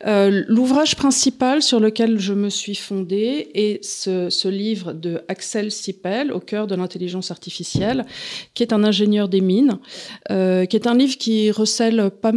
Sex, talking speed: female, 180 wpm